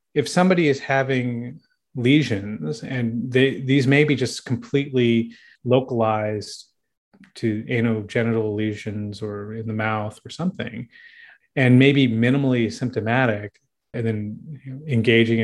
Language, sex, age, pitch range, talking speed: English, male, 30-49, 110-130 Hz, 115 wpm